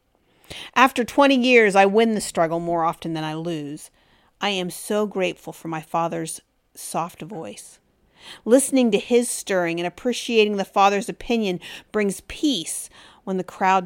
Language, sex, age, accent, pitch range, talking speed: English, female, 40-59, American, 185-255 Hz, 150 wpm